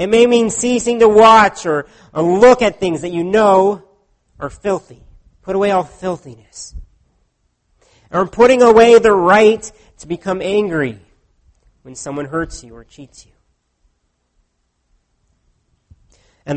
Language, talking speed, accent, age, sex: English, 130 wpm, American, 40-59, male